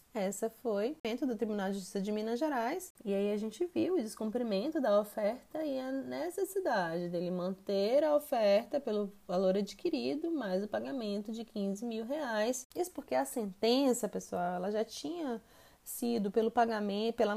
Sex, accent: female, Brazilian